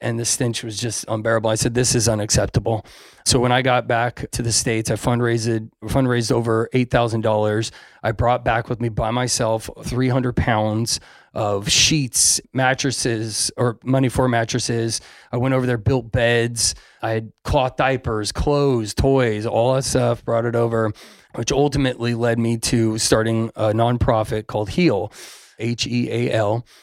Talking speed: 155 wpm